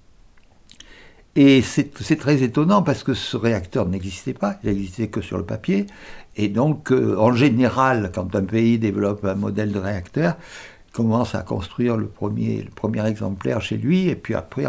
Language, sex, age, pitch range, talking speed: French, male, 60-79, 105-135 Hz, 180 wpm